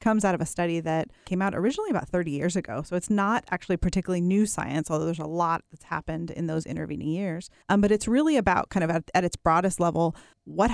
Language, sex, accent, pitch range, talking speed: English, female, American, 165-195 Hz, 240 wpm